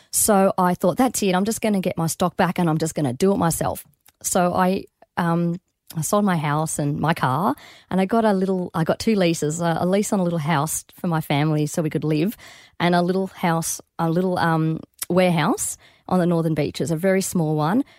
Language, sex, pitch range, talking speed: English, female, 170-210 Hz, 235 wpm